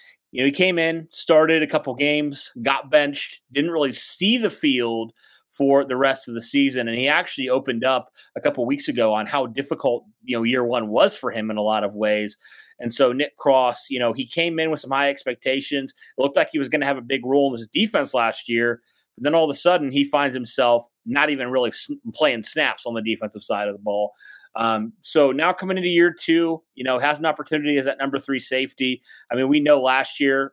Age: 30-49